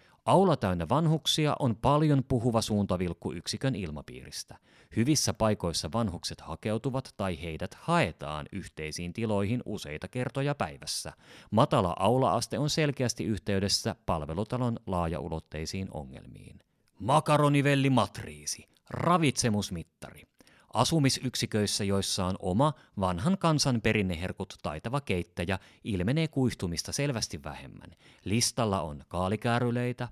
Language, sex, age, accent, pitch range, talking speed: Finnish, male, 30-49, native, 95-130 Hz, 95 wpm